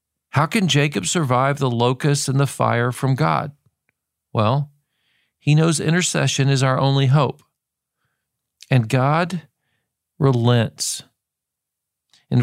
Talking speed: 110 wpm